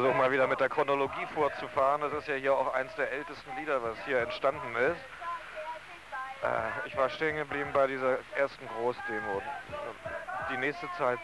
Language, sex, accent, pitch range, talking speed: German, male, German, 135-155 Hz, 165 wpm